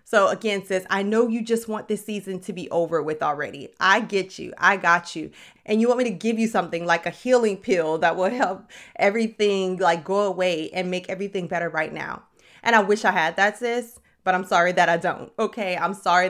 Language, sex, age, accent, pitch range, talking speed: English, female, 30-49, American, 180-230 Hz, 230 wpm